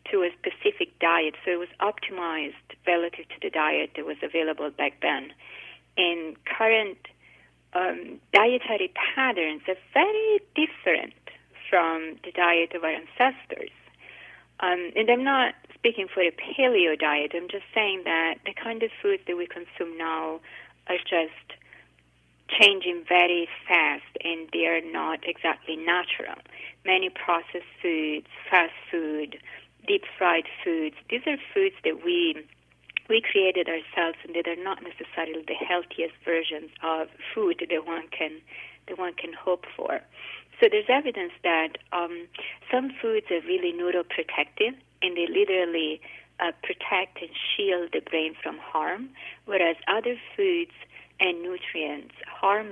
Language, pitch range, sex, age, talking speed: English, 165-230 Hz, female, 30-49, 140 wpm